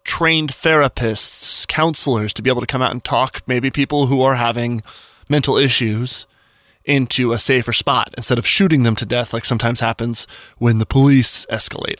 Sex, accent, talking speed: male, American, 175 wpm